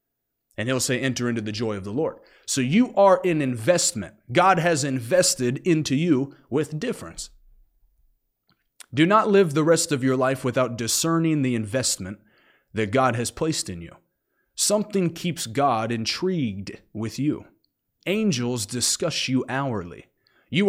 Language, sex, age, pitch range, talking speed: English, male, 30-49, 125-185 Hz, 150 wpm